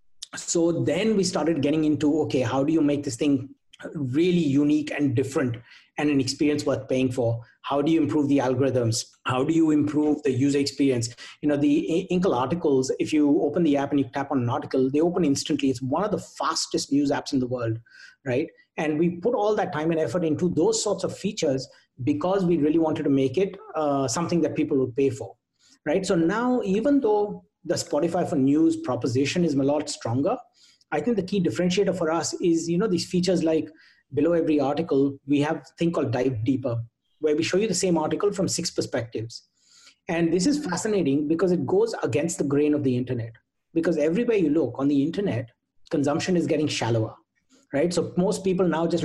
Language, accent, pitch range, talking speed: English, Indian, 140-175 Hz, 210 wpm